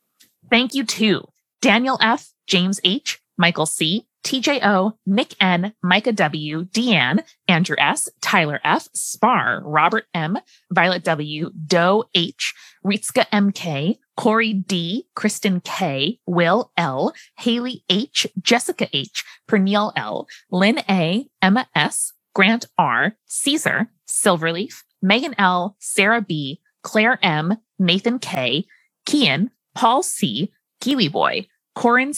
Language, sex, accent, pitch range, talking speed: English, female, American, 190-245 Hz, 120 wpm